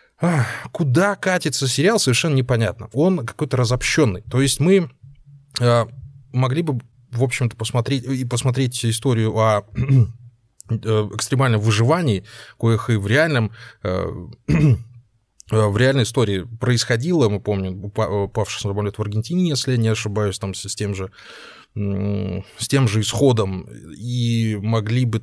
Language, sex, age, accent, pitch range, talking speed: Russian, male, 20-39, native, 110-135 Hz, 135 wpm